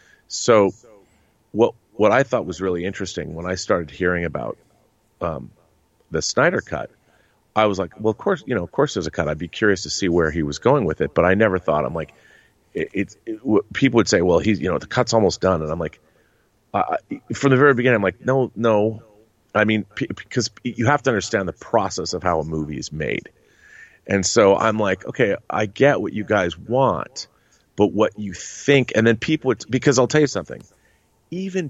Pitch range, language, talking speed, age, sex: 90-115 Hz, English, 215 wpm, 40-59, male